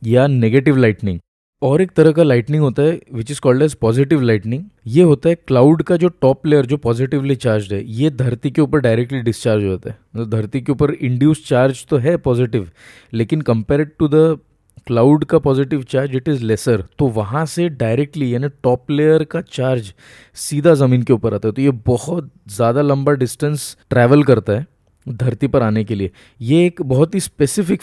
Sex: male